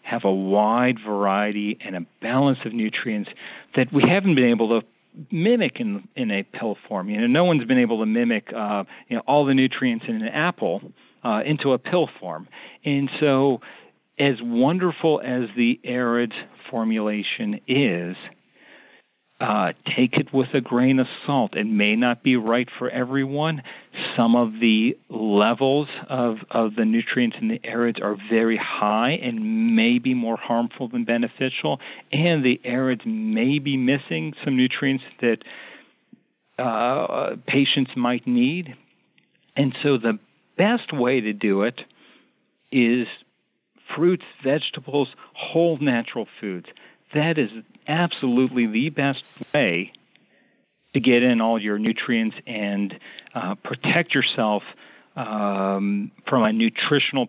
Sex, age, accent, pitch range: male, 40-59, American, 115-155 Hz